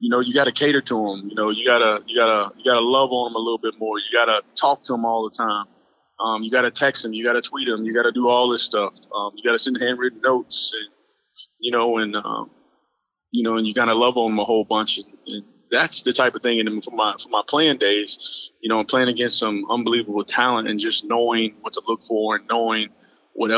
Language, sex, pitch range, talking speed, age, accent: English, male, 110-130 Hz, 255 wpm, 20-39, American